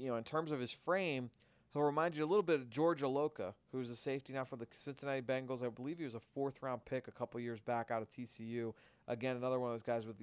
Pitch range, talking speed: 120-140 Hz, 270 wpm